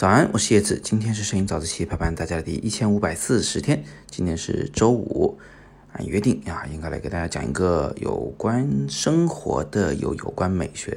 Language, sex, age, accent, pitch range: Chinese, male, 20-39, native, 80-110 Hz